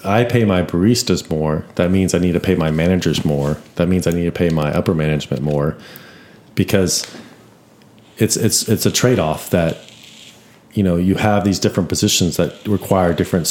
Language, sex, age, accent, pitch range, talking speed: English, male, 30-49, American, 85-105 Hz, 180 wpm